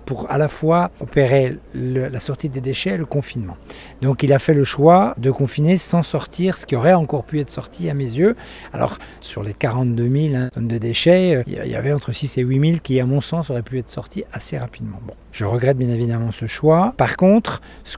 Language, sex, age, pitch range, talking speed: French, male, 40-59, 125-155 Hz, 230 wpm